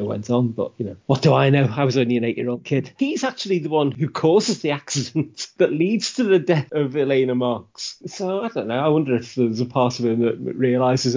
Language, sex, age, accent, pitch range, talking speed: English, male, 30-49, British, 115-135 Hz, 240 wpm